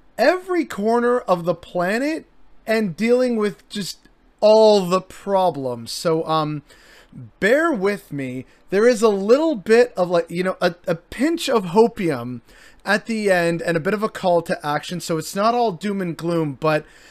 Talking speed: 175 wpm